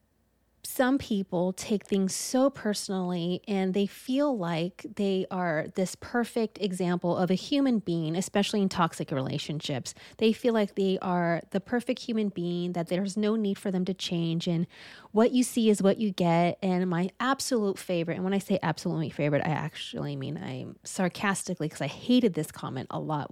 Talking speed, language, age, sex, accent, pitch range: 180 wpm, English, 30-49, female, American, 160-205 Hz